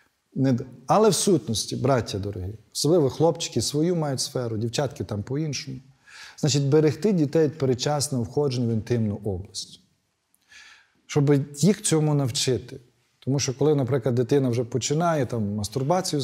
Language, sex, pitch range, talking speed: Ukrainian, male, 115-140 Hz, 130 wpm